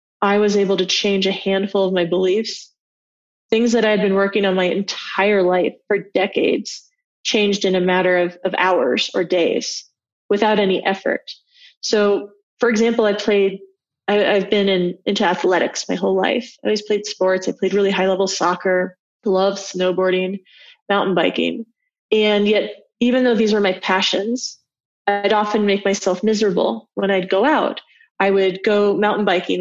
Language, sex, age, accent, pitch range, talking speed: English, female, 30-49, American, 190-220 Hz, 170 wpm